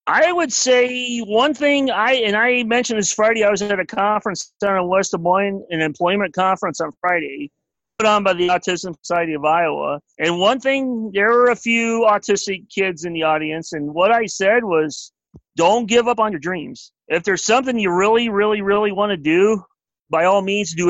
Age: 40-59